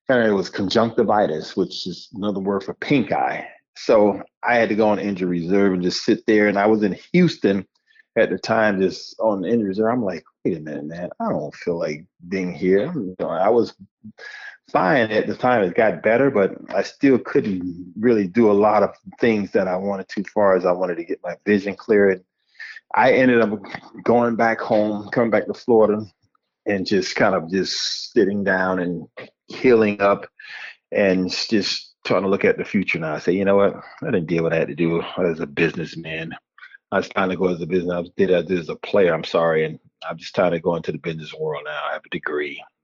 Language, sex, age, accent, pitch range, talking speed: English, male, 30-49, American, 90-110 Hz, 220 wpm